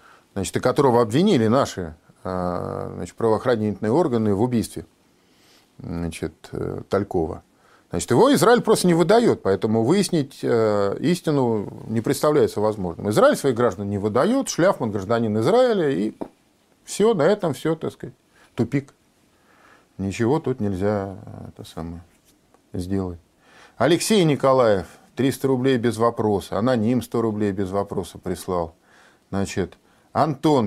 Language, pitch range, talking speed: Russian, 100-150 Hz, 115 wpm